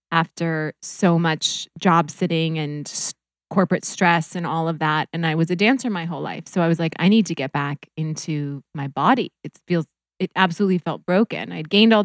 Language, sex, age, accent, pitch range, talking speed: English, female, 20-39, American, 165-200 Hz, 205 wpm